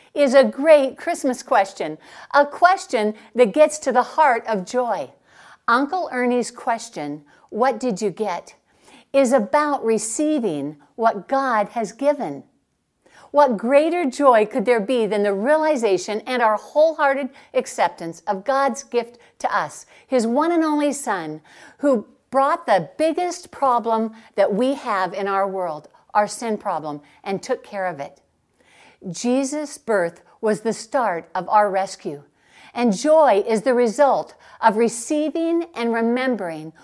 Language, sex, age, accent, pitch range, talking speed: English, female, 60-79, American, 200-275 Hz, 140 wpm